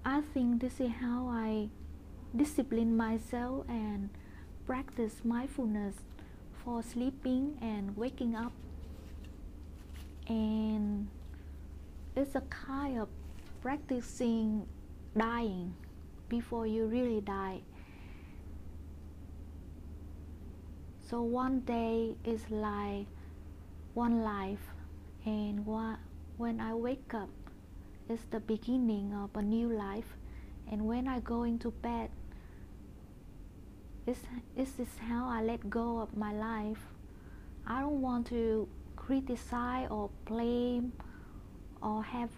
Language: English